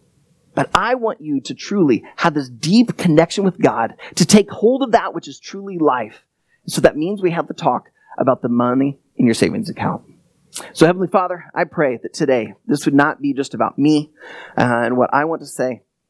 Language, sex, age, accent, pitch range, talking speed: English, male, 30-49, American, 130-170 Hz, 210 wpm